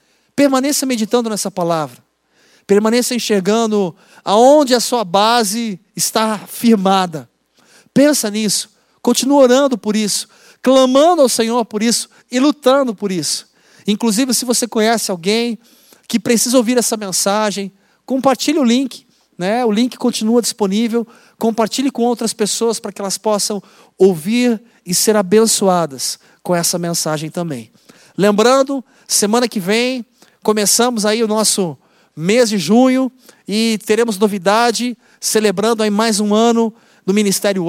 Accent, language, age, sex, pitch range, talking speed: Brazilian, Portuguese, 50-69, male, 200-235 Hz, 130 wpm